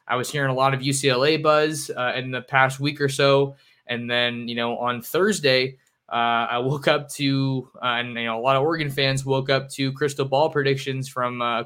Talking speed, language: 215 wpm, English